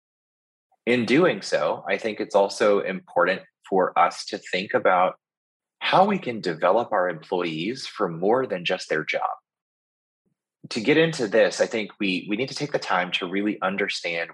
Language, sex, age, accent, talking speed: English, male, 20-39, American, 170 wpm